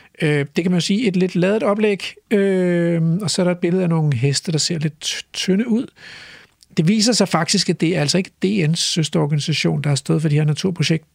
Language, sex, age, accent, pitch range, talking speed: Danish, male, 60-79, native, 150-200 Hz, 215 wpm